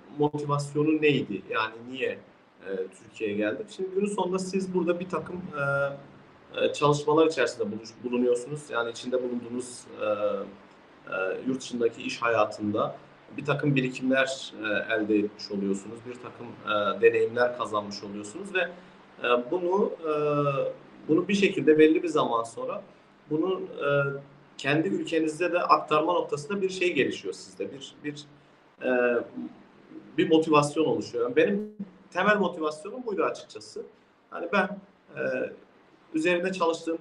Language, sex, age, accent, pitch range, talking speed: Turkish, male, 40-59, native, 130-175 Hz, 130 wpm